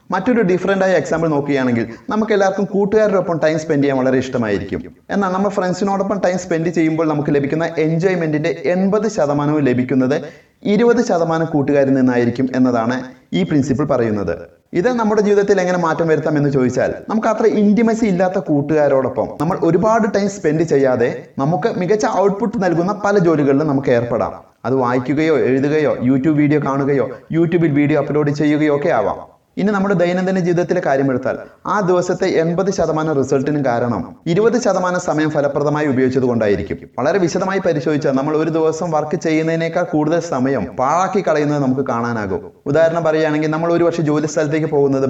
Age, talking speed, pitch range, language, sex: 30-49, 145 wpm, 135-185 Hz, Malayalam, male